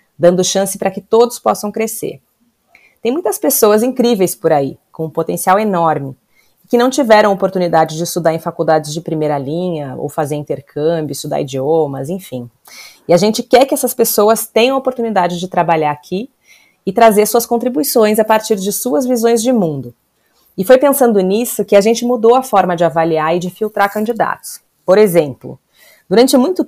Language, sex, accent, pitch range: Portuguese, female, Brazilian, 175-235 Hz